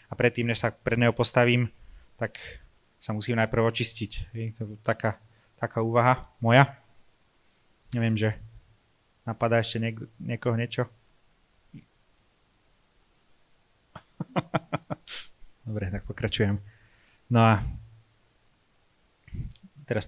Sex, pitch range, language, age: male, 105-115 Hz, Slovak, 30-49